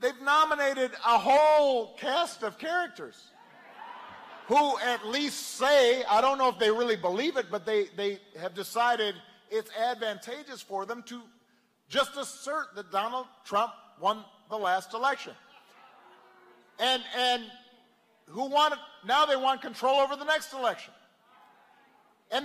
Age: 50-69